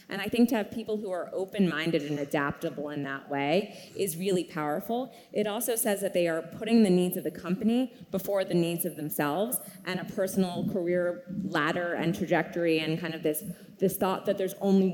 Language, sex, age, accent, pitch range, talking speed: English, female, 20-39, American, 170-205 Hz, 200 wpm